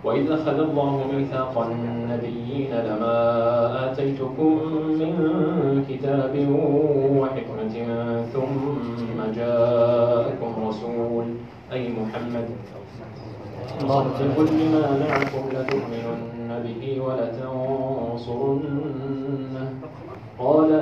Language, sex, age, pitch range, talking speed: Arabic, male, 20-39, 120-140 Hz, 70 wpm